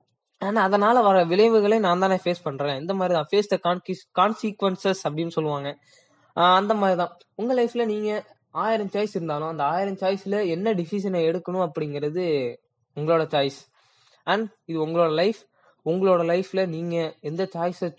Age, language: 20-39, Tamil